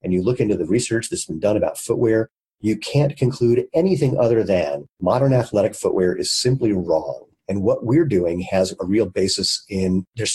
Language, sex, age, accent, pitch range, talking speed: English, male, 40-59, American, 95-120 Hz, 190 wpm